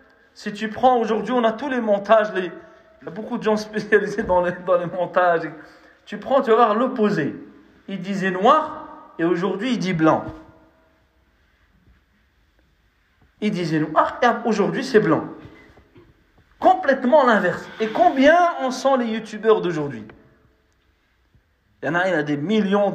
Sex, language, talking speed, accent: male, French, 160 wpm, French